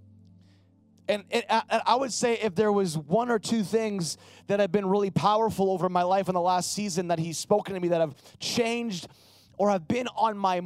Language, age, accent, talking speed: English, 30-49, American, 210 wpm